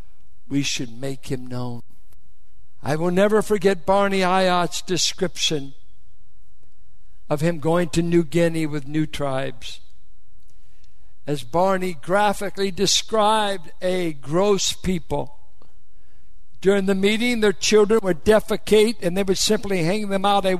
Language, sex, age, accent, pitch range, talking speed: English, male, 60-79, American, 145-200 Hz, 125 wpm